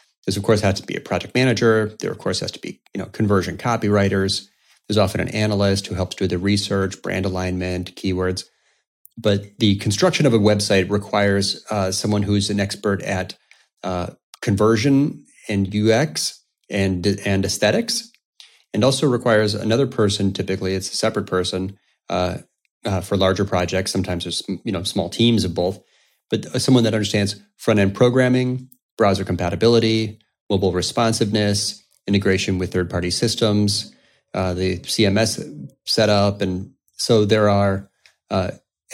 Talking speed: 145 wpm